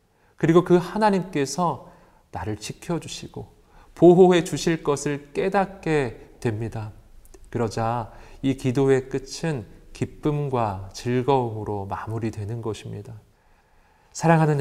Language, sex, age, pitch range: Korean, male, 40-59, 110-155 Hz